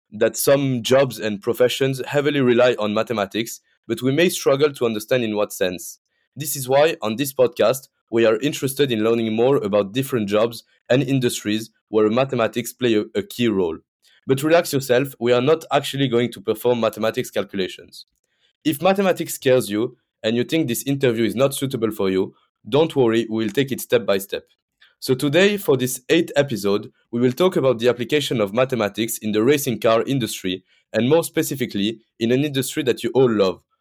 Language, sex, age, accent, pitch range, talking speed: English, male, 20-39, French, 110-145 Hz, 190 wpm